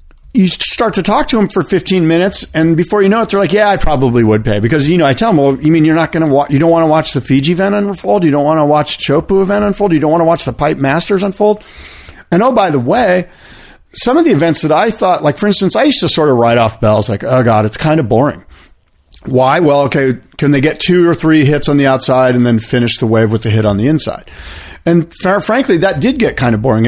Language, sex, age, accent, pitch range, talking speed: English, male, 40-59, American, 120-160 Hz, 275 wpm